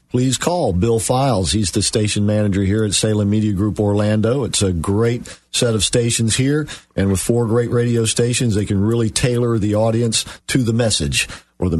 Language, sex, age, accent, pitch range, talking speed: English, male, 50-69, American, 100-120 Hz, 195 wpm